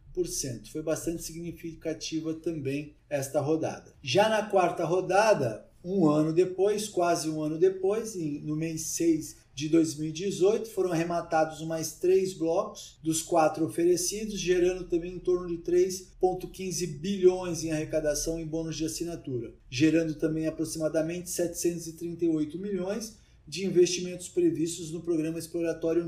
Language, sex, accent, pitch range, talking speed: Portuguese, male, Brazilian, 155-185 Hz, 125 wpm